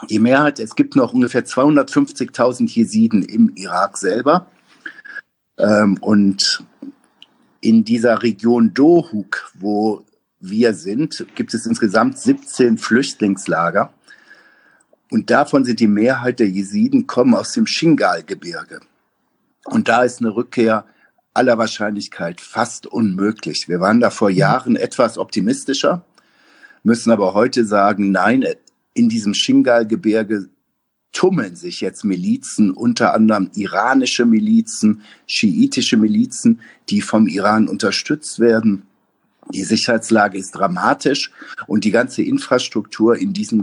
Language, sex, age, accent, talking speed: German, male, 50-69, German, 120 wpm